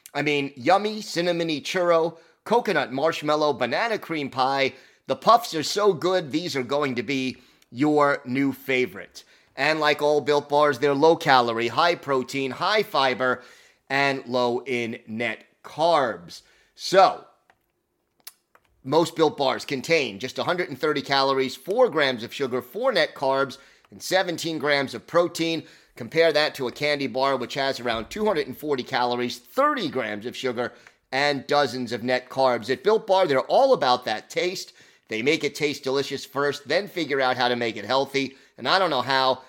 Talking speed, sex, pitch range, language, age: 165 wpm, male, 130-165 Hz, English, 30-49